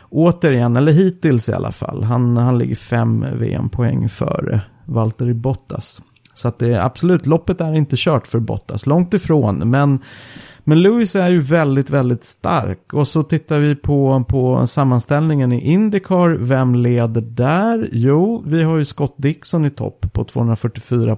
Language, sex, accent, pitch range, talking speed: Swedish, male, native, 120-150 Hz, 160 wpm